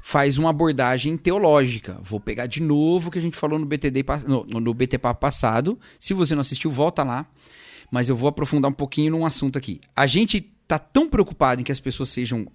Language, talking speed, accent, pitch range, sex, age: Portuguese, 205 wpm, Brazilian, 125-155 Hz, male, 40-59